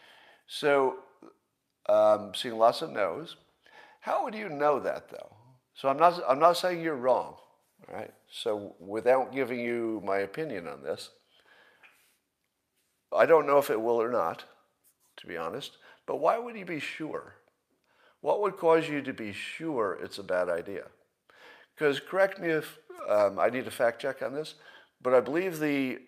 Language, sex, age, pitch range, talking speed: English, male, 50-69, 105-165 Hz, 170 wpm